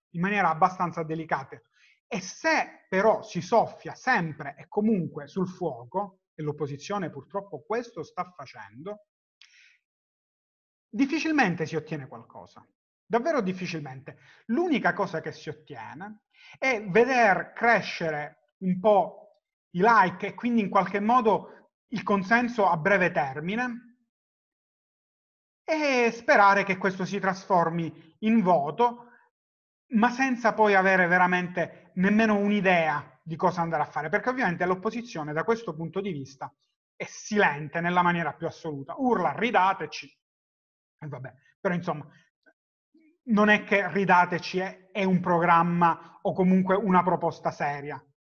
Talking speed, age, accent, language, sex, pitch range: 125 wpm, 30-49, native, Italian, male, 160-215 Hz